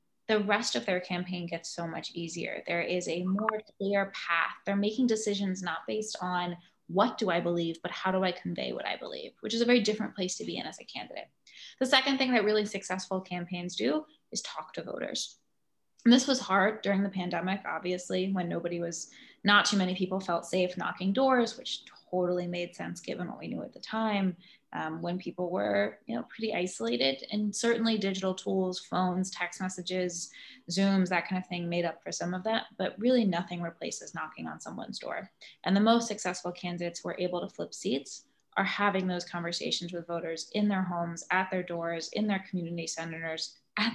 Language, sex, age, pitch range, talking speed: English, female, 10-29, 175-220 Hz, 200 wpm